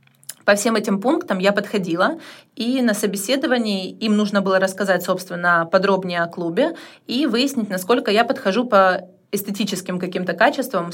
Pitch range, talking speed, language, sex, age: 190-230 Hz, 145 wpm, Russian, female, 30-49